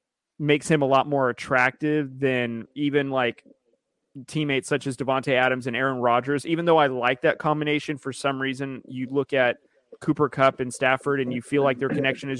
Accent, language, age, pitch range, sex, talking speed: American, English, 30-49, 130-150 Hz, male, 195 wpm